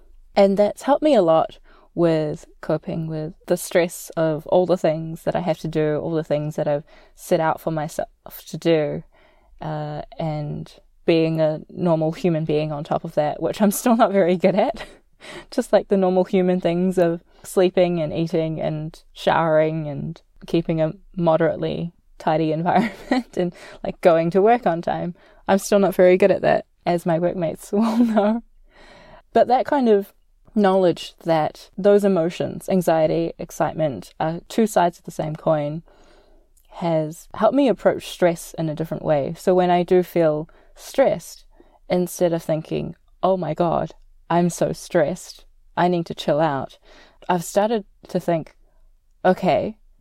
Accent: Australian